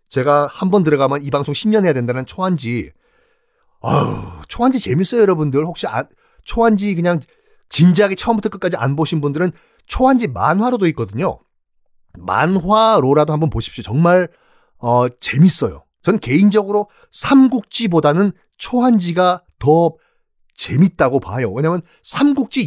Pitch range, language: 145-220 Hz, Korean